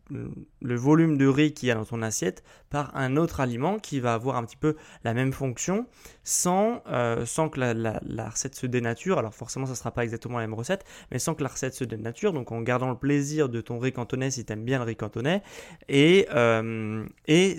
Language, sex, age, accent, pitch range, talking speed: French, male, 20-39, French, 120-150 Hz, 230 wpm